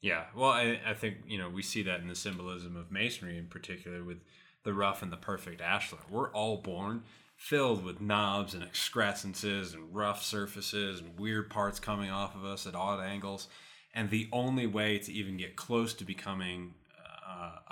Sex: male